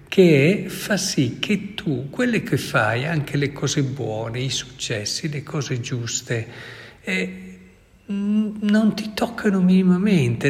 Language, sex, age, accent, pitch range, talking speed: Italian, male, 60-79, native, 125-185 Hz, 125 wpm